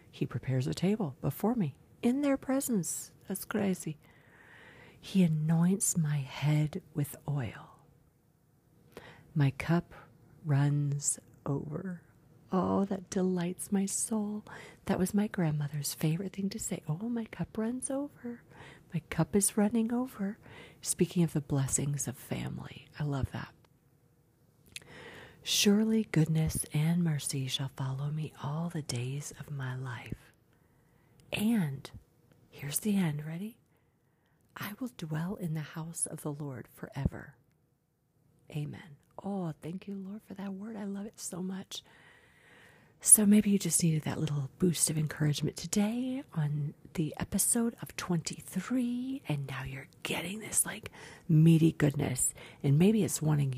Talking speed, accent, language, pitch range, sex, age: 135 wpm, American, English, 145-195 Hz, female, 50-69